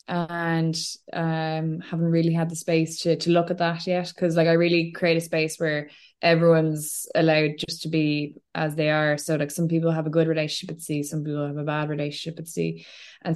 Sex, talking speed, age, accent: female, 215 wpm, 20-39, Irish